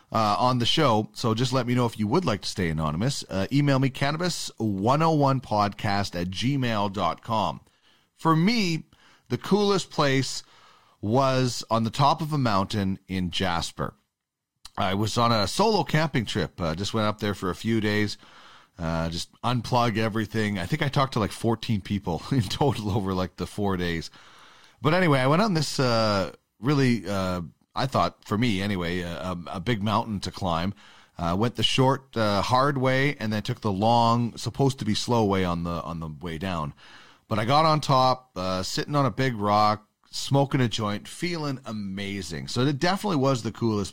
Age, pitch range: 30-49, 95-135 Hz